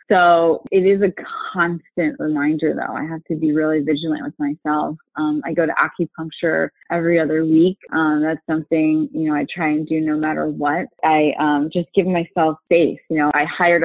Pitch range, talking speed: 155-175 Hz, 195 wpm